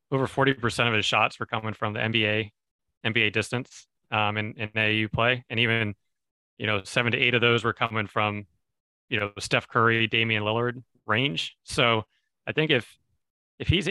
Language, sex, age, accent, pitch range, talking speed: English, male, 30-49, American, 105-125 Hz, 180 wpm